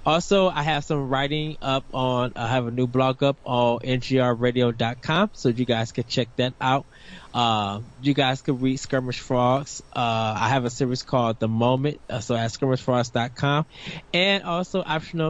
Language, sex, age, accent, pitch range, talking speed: English, male, 20-39, American, 120-150 Hz, 170 wpm